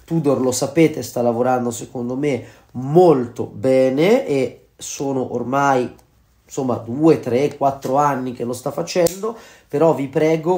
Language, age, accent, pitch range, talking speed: Italian, 30-49, native, 130-170 Hz, 120 wpm